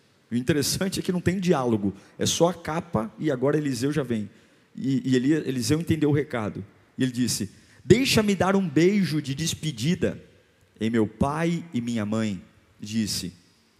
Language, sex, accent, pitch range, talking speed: Portuguese, male, Brazilian, 115-180 Hz, 165 wpm